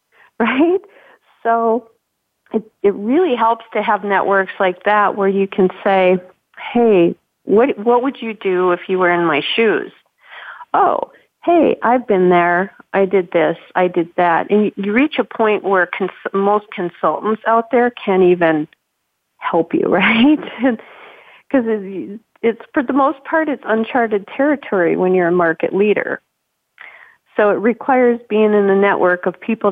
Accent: American